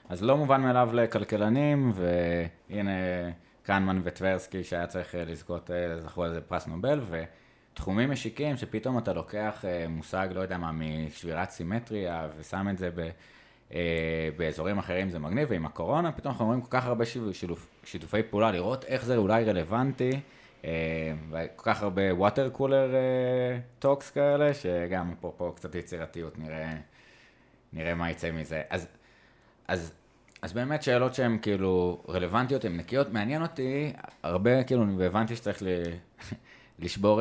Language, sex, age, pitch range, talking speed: Hebrew, male, 20-39, 85-120 Hz, 135 wpm